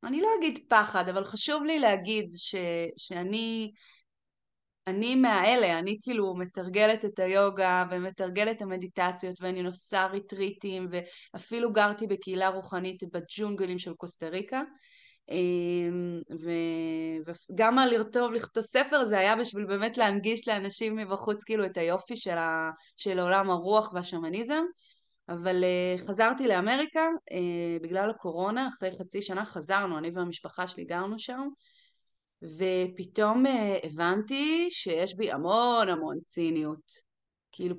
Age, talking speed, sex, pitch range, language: 20-39, 120 wpm, female, 180-225 Hz, Hebrew